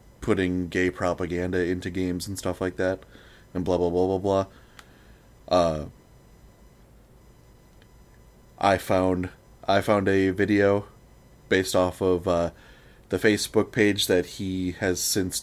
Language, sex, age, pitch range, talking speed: English, male, 20-39, 90-105 Hz, 130 wpm